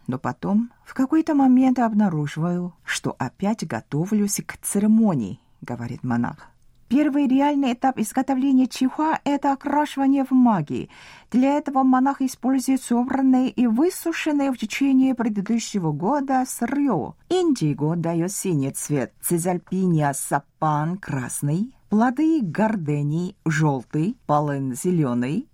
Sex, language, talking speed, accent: female, Russian, 120 wpm, native